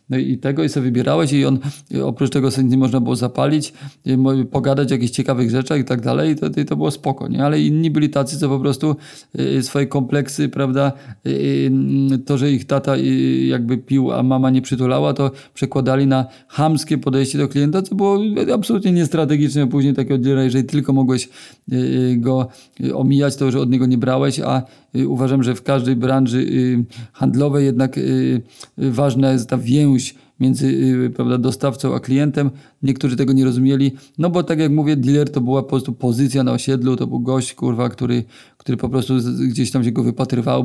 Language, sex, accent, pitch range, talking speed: Polish, male, native, 125-140 Hz, 175 wpm